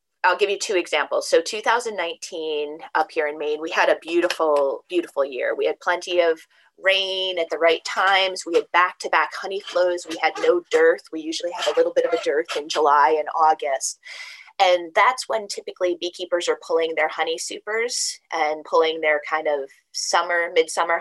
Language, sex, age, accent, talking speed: English, female, 20-39, American, 190 wpm